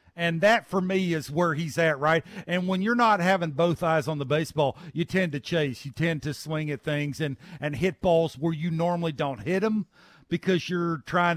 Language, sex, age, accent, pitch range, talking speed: English, male, 50-69, American, 165-220 Hz, 220 wpm